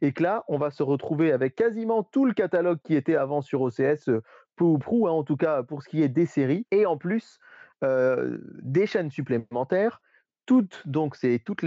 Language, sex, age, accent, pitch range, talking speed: French, male, 30-49, French, 135-175 Hz, 210 wpm